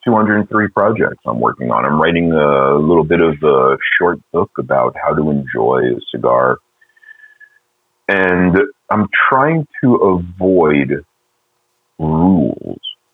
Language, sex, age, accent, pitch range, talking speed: English, male, 40-59, American, 75-110 Hz, 120 wpm